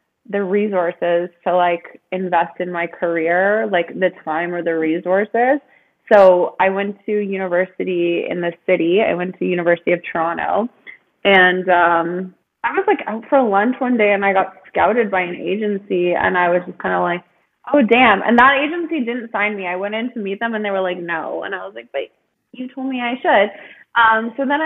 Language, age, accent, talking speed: English, 20-39, American, 205 wpm